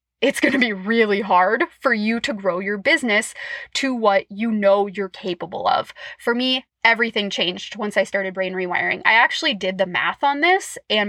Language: English